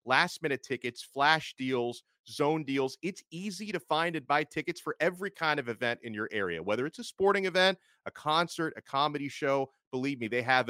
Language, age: English, 30-49